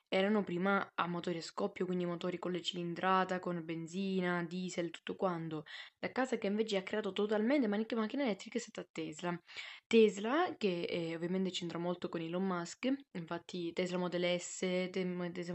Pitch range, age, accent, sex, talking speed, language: 175-205 Hz, 10-29, native, female, 170 wpm, Italian